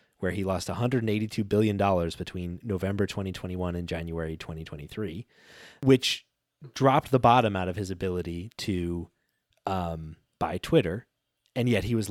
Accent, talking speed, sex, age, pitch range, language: American, 135 wpm, male, 30-49, 90-115 Hz, English